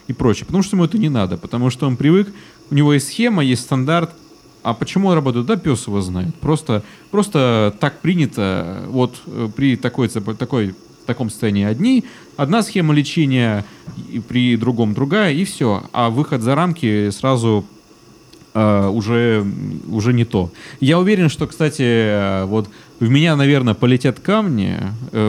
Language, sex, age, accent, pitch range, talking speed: Russian, male, 30-49, native, 110-145 Hz, 155 wpm